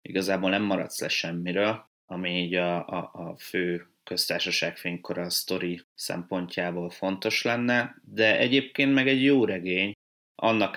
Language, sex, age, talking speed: Hungarian, male, 20-39, 135 wpm